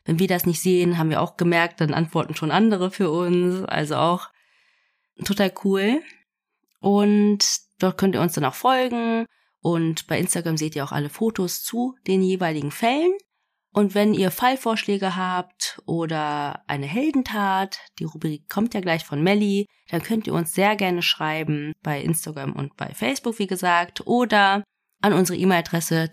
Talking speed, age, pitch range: 165 wpm, 20-39, 155-200 Hz